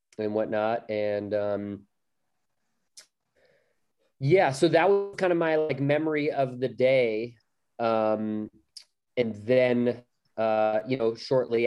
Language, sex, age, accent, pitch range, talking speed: English, male, 30-49, American, 105-120 Hz, 120 wpm